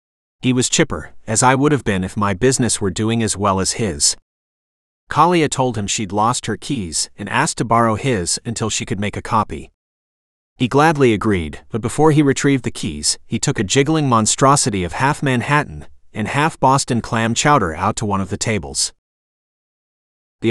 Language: English